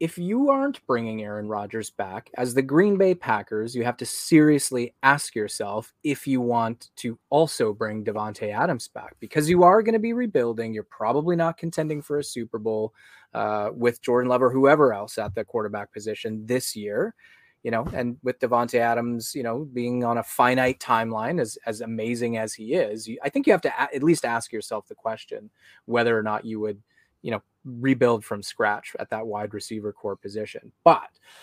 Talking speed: 195 wpm